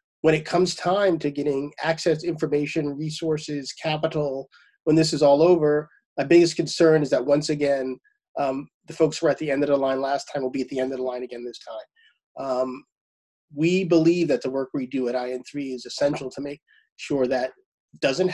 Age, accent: 30-49, American